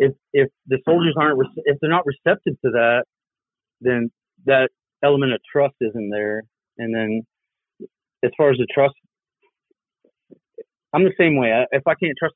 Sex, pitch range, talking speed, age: male, 115-135 Hz, 165 wpm, 30-49